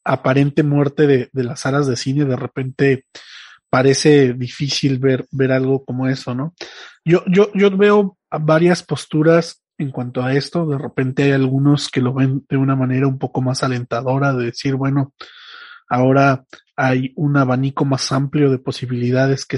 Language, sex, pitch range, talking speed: Spanish, male, 130-150 Hz, 165 wpm